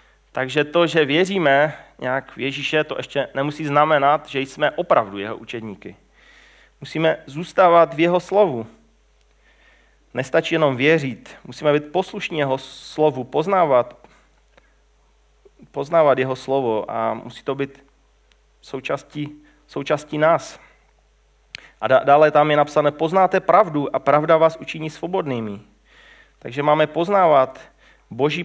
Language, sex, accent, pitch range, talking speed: Czech, male, native, 135-155 Hz, 115 wpm